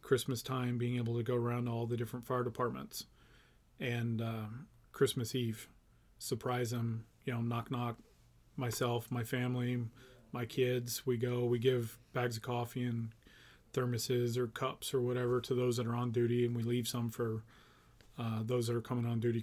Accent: American